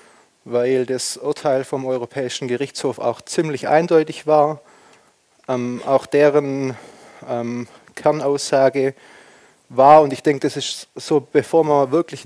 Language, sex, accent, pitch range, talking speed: German, male, German, 130-150 Hz, 120 wpm